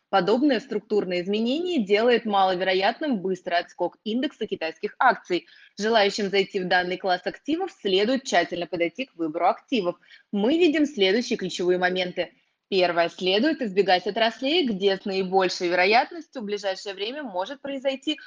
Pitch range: 180-245 Hz